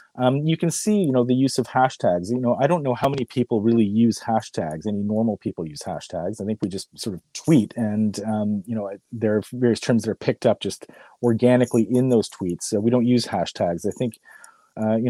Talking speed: 235 wpm